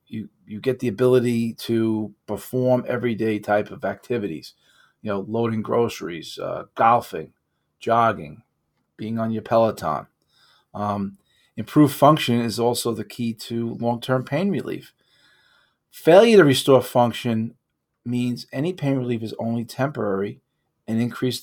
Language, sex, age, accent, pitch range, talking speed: English, male, 40-59, American, 105-130 Hz, 130 wpm